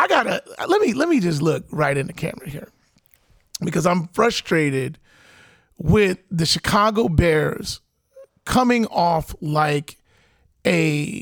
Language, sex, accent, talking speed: English, male, American, 130 wpm